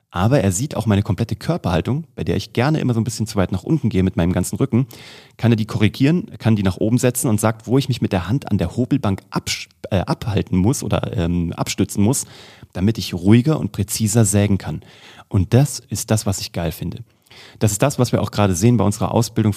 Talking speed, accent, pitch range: 235 wpm, German, 100-125 Hz